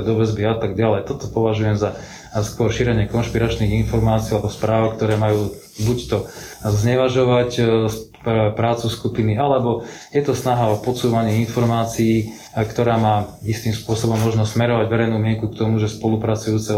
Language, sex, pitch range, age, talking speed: Slovak, male, 105-115 Hz, 20-39, 145 wpm